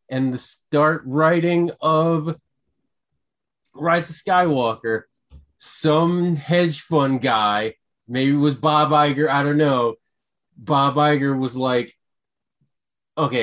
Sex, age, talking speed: male, 30-49, 110 wpm